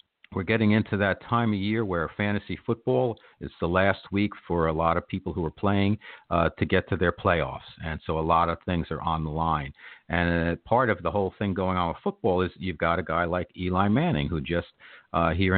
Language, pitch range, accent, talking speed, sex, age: English, 80-95 Hz, American, 235 wpm, male, 50-69